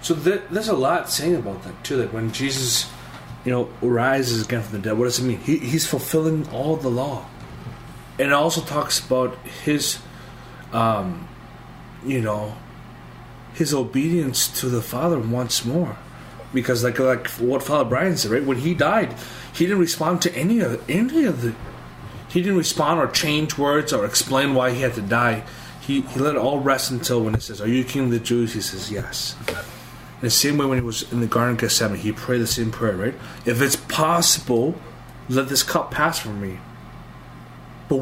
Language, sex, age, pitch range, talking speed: English, male, 30-49, 115-140 Hz, 195 wpm